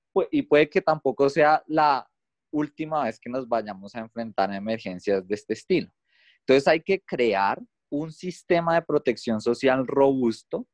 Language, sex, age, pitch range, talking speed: Spanish, male, 20-39, 100-140 Hz, 155 wpm